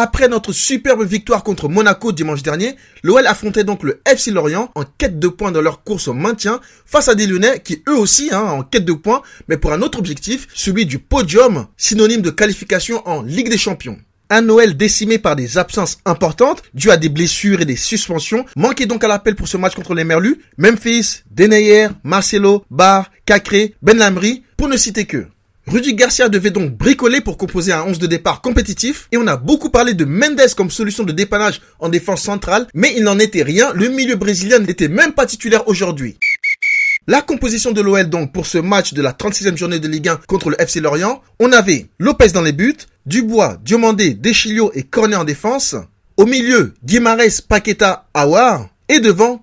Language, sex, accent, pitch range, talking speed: French, male, French, 180-240 Hz, 200 wpm